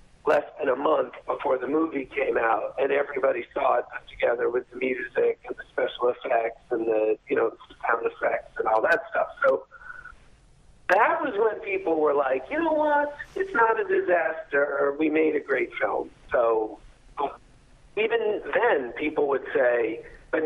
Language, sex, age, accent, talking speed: English, male, 50-69, American, 170 wpm